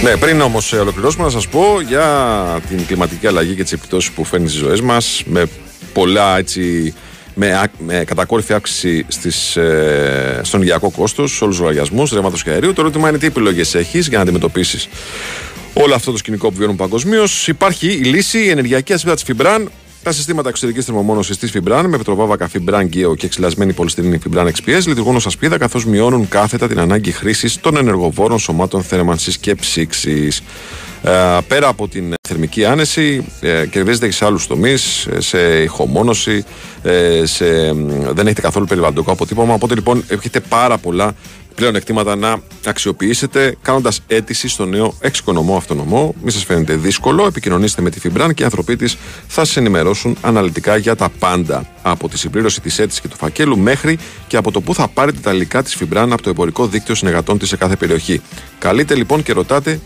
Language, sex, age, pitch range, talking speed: Greek, male, 40-59, 90-120 Hz, 170 wpm